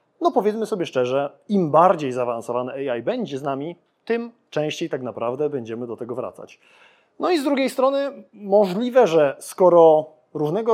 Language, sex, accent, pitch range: Polish, male, native, 150-220 Hz